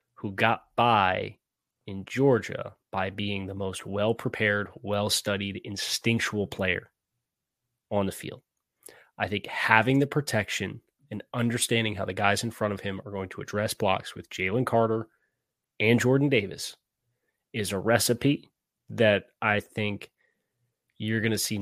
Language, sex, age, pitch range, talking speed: English, male, 20-39, 100-115 Hz, 140 wpm